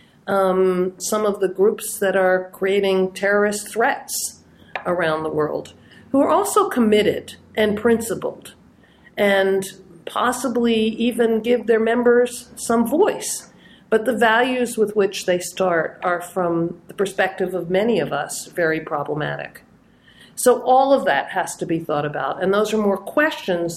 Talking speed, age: 145 wpm, 50-69